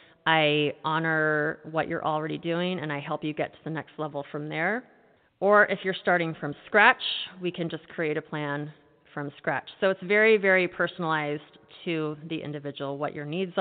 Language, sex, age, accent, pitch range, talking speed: English, female, 30-49, American, 160-205 Hz, 185 wpm